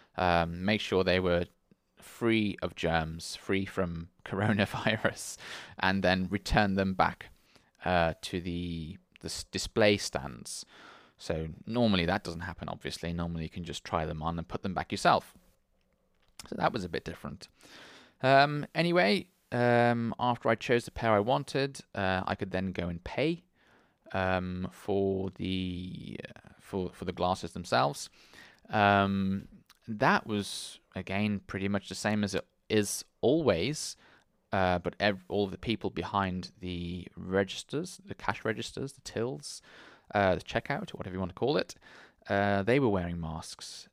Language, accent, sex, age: English, British, male, 20-39